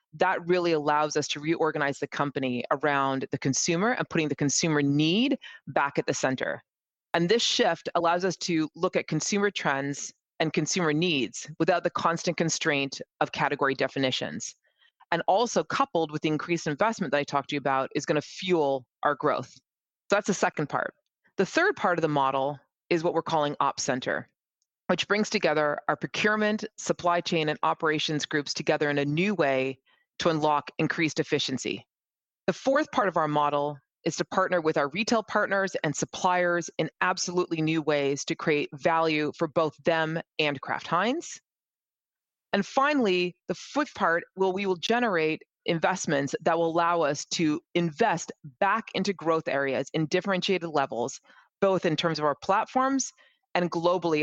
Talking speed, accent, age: 170 wpm, American, 30-49